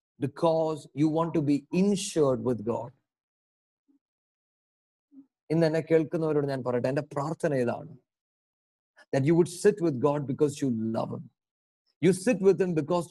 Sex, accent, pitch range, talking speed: male, Indian, 135-195 Hz, 105 wpm